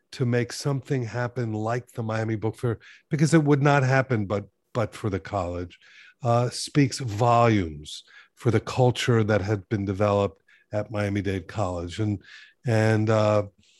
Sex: male